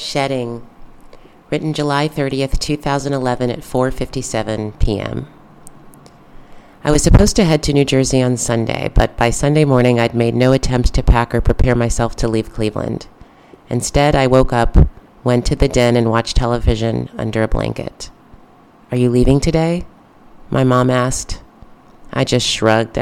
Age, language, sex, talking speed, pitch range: 30-49, English, female, 150 wpm, 115-135 Hz